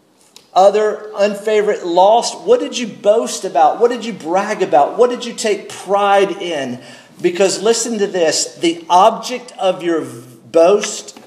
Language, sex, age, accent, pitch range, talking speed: English, male, 50-69, American, 170-220 Hz, 150 wpm